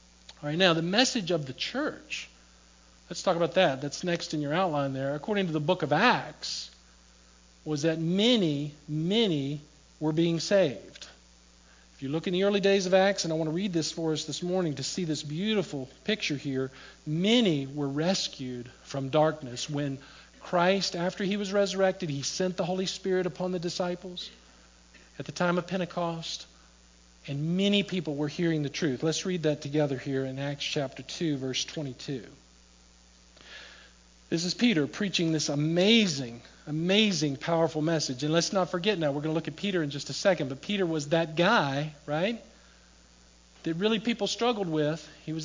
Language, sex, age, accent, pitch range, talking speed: English, male, 50-69, American, 145-200 Hz, 180 wpm